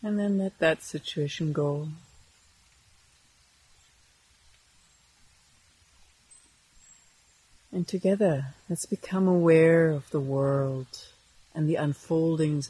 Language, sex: English, female